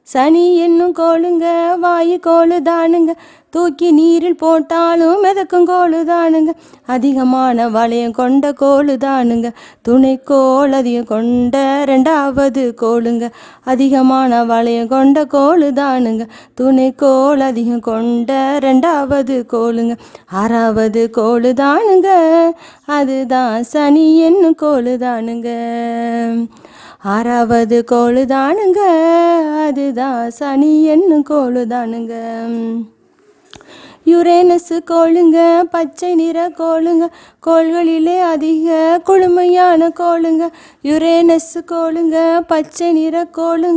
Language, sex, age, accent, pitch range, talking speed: English, female, 20-39, Indian, 245-330 Hz, 65 wpm